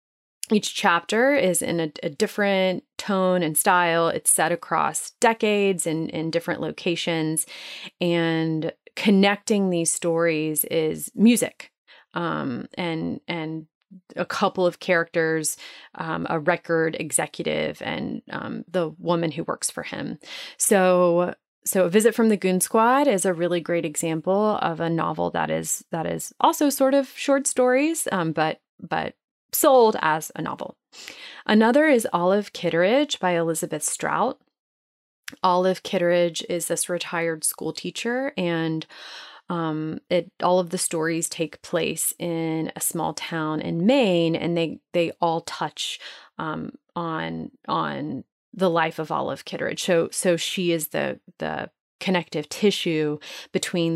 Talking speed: 140 wpm